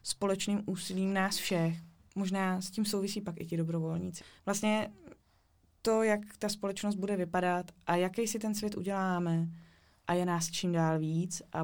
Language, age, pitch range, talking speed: Czech, 20-39, 170-190 Hz, 165 wpm